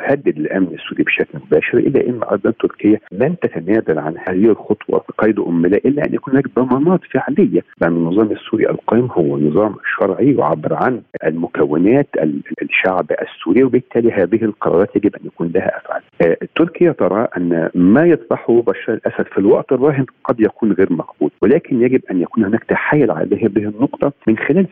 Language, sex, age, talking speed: Arabic, male, 50-69, 165 wpm